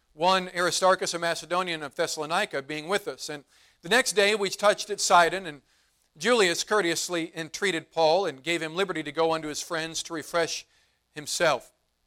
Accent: American